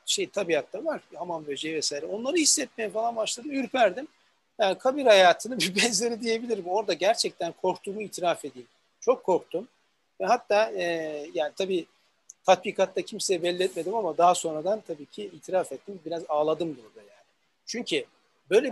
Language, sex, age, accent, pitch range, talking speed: Turkish, male, 60-79, native, 160-225 Hz, 145 wpm